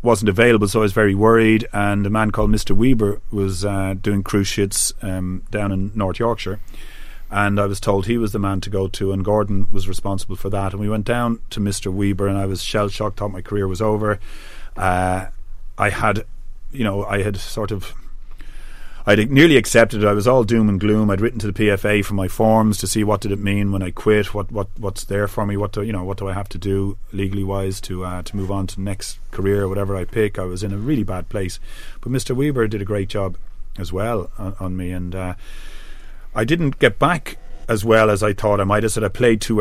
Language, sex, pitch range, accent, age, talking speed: English, male, 95-110 Hz, Irish, 30-49, 245 wpm